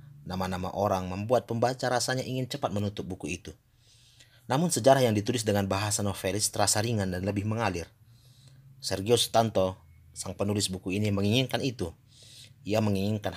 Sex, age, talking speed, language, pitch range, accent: male, 30-49, 145 wpm, Indonesian, 95-120 Hz, native